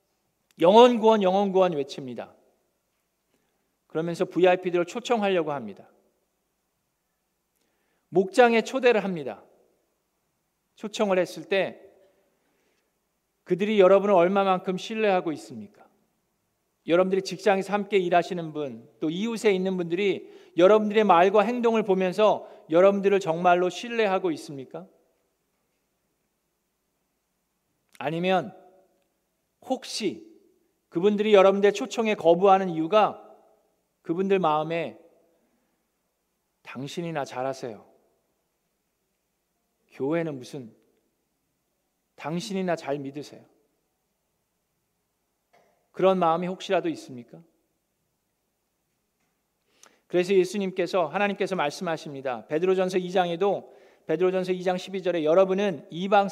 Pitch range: 170-200 Hz